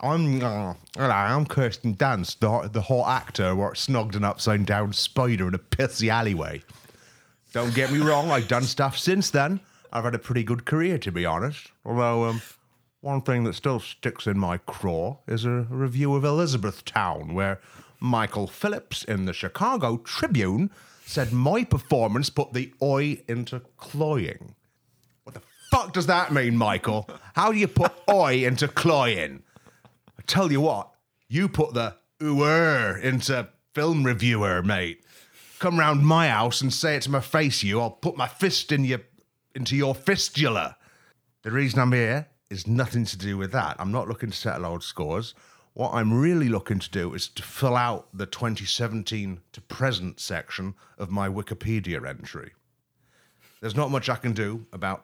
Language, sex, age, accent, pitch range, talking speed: English, male, 30-49, British, 105-140 Hz, 170 wpm